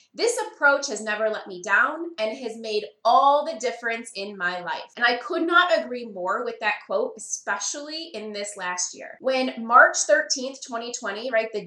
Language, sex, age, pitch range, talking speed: English, female, 20-39, 215-310 Hz, 185 wpm